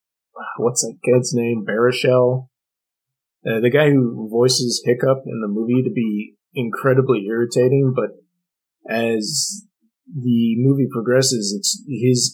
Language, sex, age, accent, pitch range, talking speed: English, male, 30-49, American, 105-135 Hz, 120 wpm